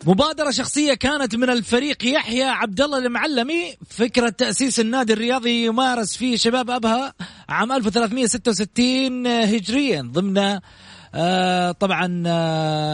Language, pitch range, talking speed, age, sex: Arabic, 185-235 Hz, 100 wpm, 30-49, male